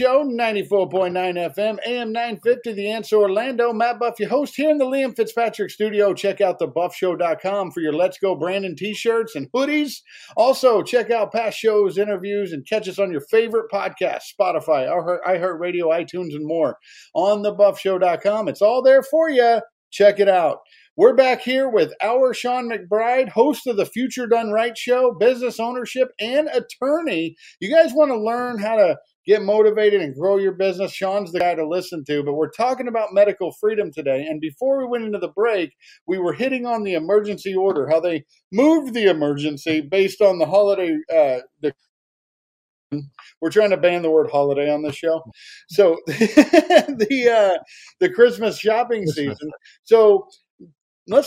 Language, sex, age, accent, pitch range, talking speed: English, male, 50-69, American, 180-250 Hz, 165 wpm